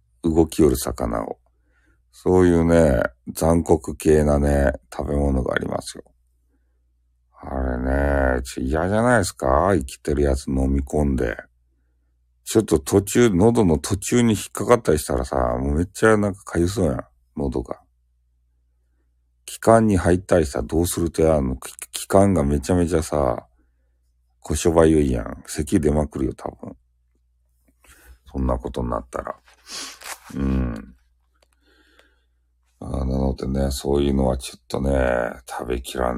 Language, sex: Japanese, male